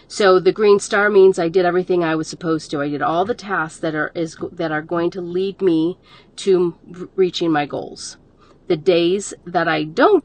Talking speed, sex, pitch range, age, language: 210 wpm, female, 165-195 Hz, 40-59, English